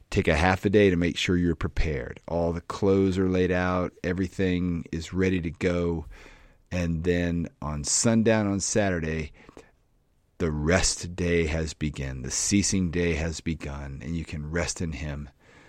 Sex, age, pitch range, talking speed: male, 40-59, 80-100 Hz, 165 wpm